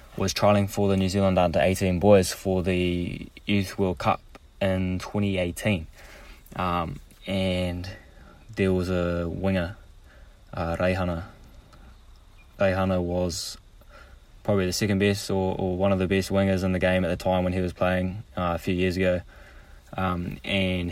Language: English